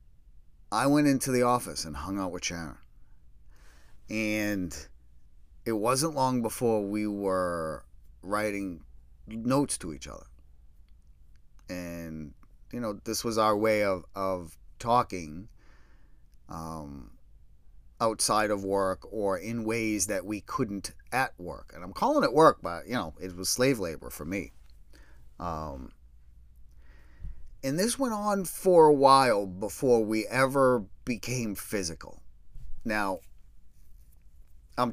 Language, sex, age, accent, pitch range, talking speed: English, male, 40-59, American, 70-115 Hz, 125 wpm